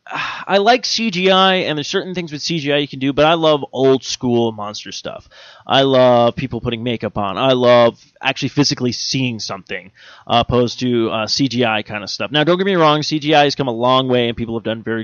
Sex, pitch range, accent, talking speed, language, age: male, 115-145 Hz, American, 215 wpm, English, 20-39